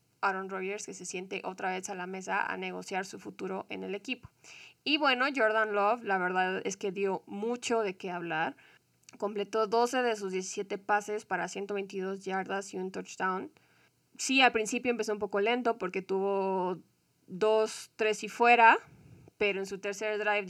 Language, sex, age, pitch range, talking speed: Spanish, female, 20-39, 195-230 Hz, 175 wpm